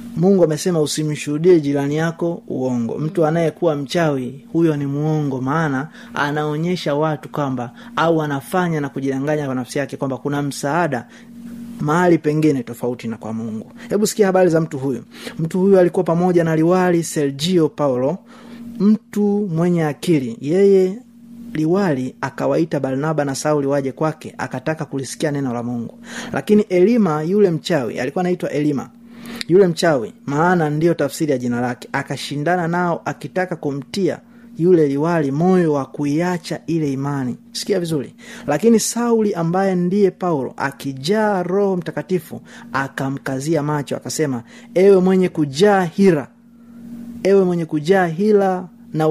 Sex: male